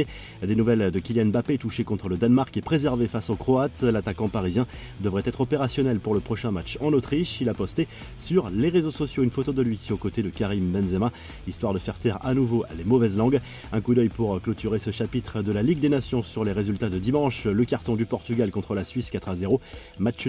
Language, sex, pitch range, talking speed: French, male, 105-130 Hz, 230 wpm